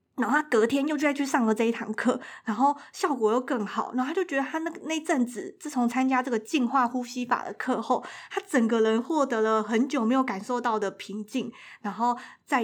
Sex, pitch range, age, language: female, 220-275 Hz, 20-39, Chinese